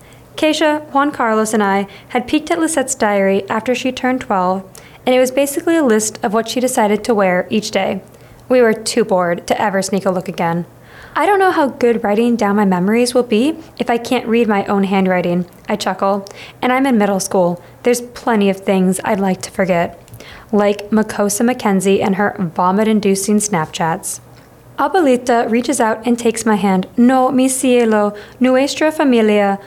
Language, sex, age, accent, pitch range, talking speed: English, female, 20-39, American, 200-255 Hz, 180 wpm